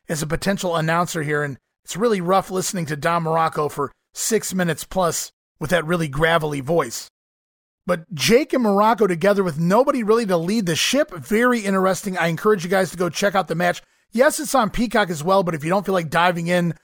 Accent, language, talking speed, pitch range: American, English, 215 wpm, 165-210 Hz